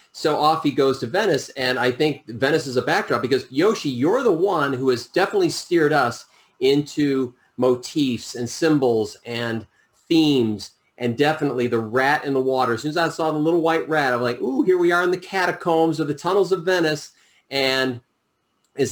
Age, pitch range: 40-59, 115-140 Hz